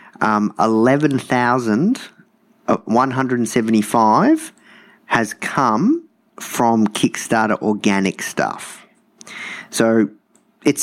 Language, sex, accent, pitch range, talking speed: English, male, Australian, 110-135 Hz, 55 wpm